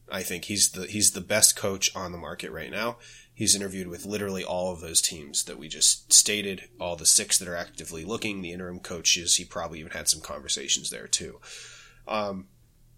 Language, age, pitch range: English, 20-39, 90-110 Hz